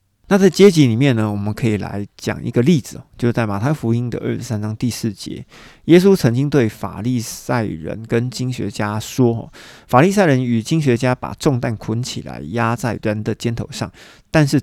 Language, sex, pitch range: Chinese, male, 105-135 Hz